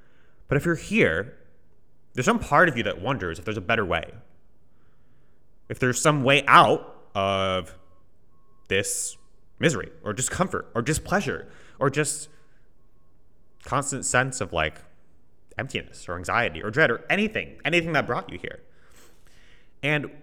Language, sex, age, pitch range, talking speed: English, male, 30-49, 90-140 Hz, 140 wpm